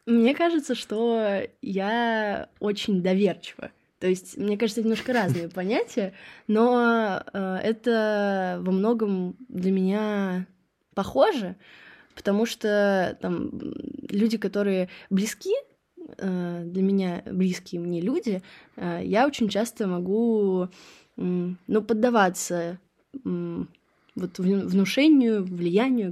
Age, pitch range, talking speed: 20-39, 175-215 Hz, 95 wpm